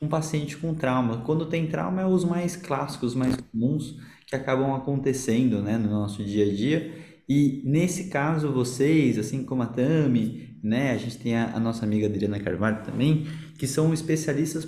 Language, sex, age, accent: Portuguese, male, 20-39, Brazilian